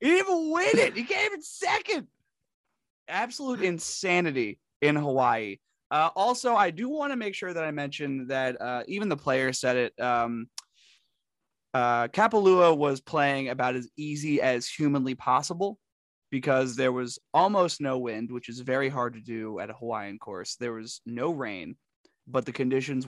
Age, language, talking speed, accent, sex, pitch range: 20-39, English, 170 wpm, American, male, 125-210 Hz